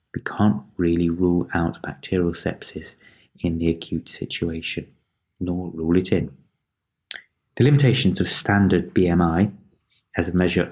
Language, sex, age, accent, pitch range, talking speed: English, male, 30-49, British, 85-95 Hz, 130 wpm